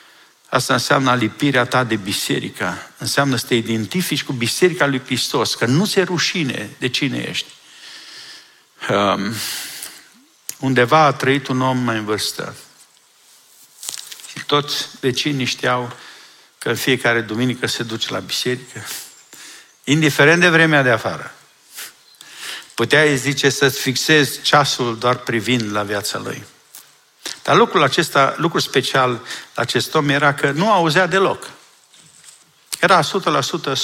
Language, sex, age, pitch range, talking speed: Romanian, male, 50-69, 125-165 Hz, 125 wpm